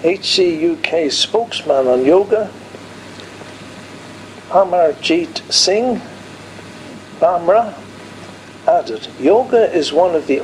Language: English